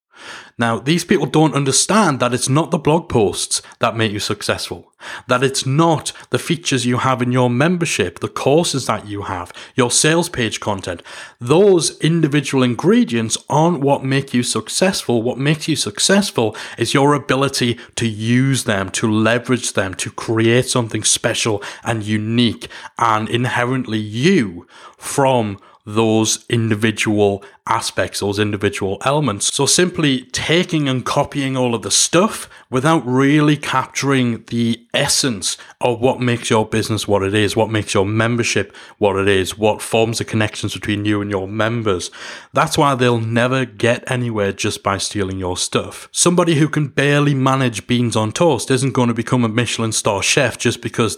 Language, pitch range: English, 110-135 Hz